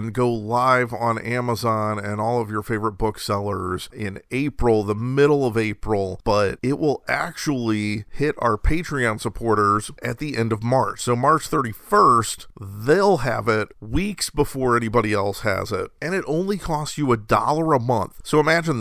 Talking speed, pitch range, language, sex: 165 wpm, 105-125 Hz, English, male